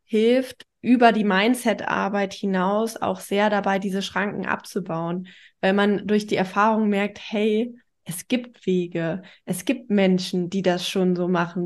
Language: German